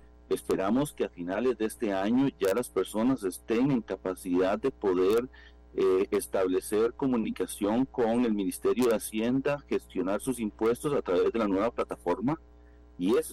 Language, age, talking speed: Spanish, 40-59, 155 wpm